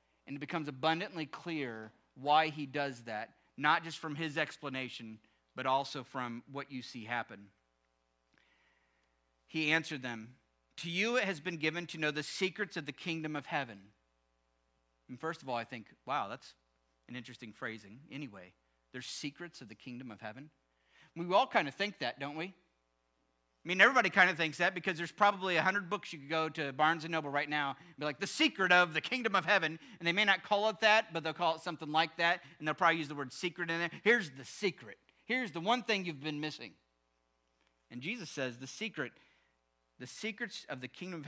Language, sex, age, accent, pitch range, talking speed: English, male, 40-59, American, 110-170 Hz, 205 wpm